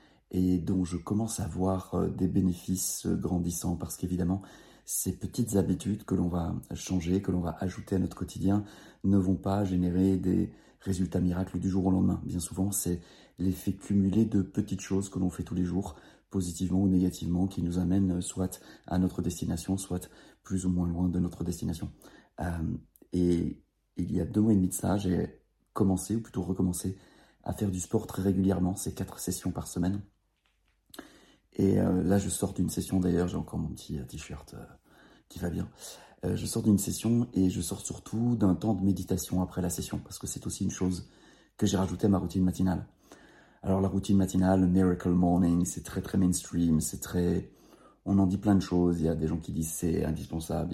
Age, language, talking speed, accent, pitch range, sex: 30-49, French, 200 wpm, French, 90-95 Hz, male